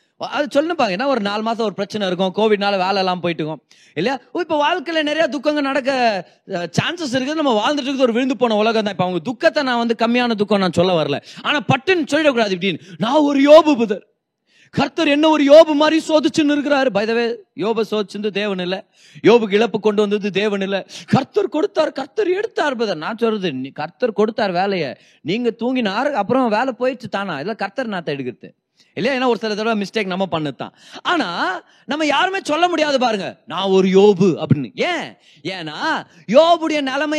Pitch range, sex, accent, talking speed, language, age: 195-280 Hz, male, native, 125 wpm, Tamil, 30-49